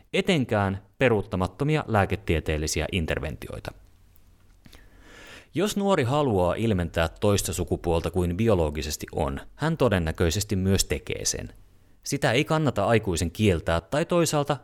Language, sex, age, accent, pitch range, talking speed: Finnish, male, 30-49, native, 90-120 Hz, 105 wpm